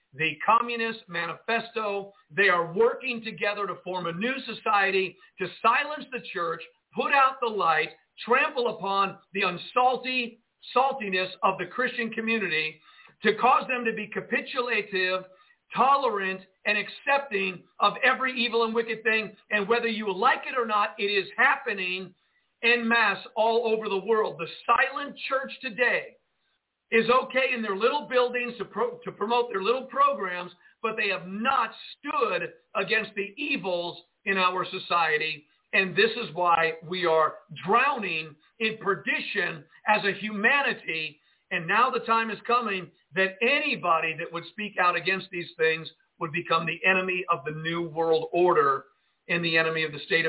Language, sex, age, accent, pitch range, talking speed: English, male, 50-69, American, 180-235 Hz, 155 wpm